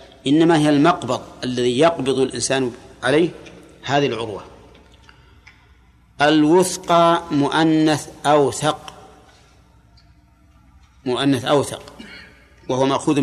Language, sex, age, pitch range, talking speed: Arabic, male, 50-69, 130-155 Hz, 75 wpm